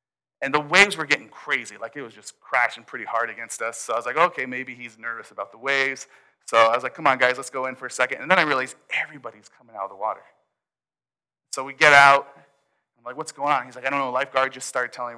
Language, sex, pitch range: English, male, 125-150 Hz